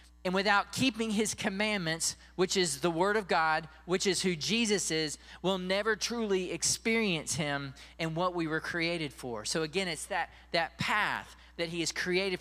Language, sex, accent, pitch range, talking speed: English, male, American, 150-195 Hz, 180 wpm